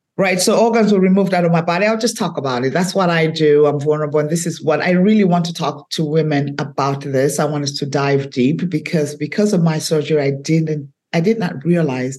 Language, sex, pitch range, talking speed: English, female, 150-195 Hz, 245 wpm